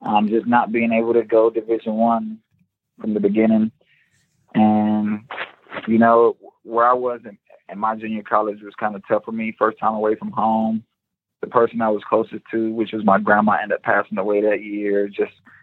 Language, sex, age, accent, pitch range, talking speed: English, male, 20-39, American, 100-115 Hz, 195 wpm